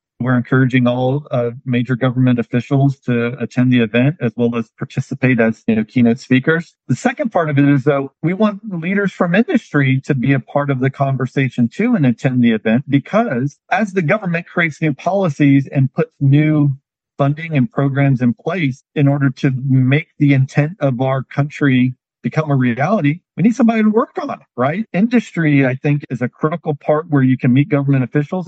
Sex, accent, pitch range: male, American, 130-160 Hz